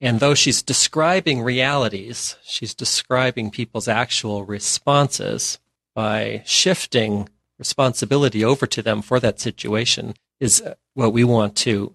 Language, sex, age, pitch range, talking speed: English, male, 40-59, 110-130 Hz, 120 wpm